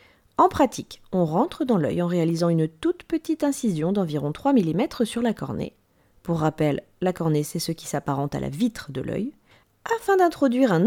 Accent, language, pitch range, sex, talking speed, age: French, French, 155-250 Hz, female, 190 wpm, 30-49